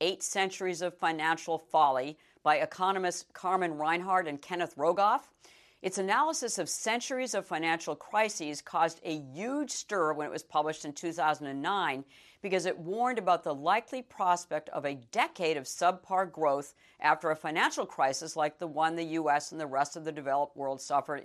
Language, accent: English, American